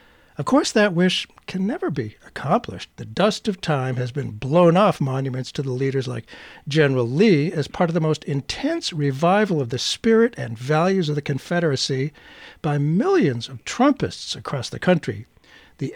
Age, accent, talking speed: 60-79, American, 175 wpm